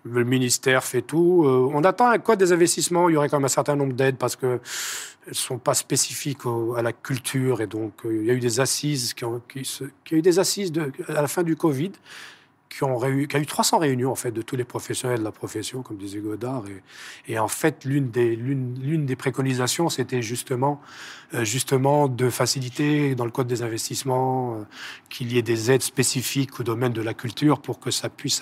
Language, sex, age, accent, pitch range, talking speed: French, male, 40-59, French, 125-155 Hz, 205 wpm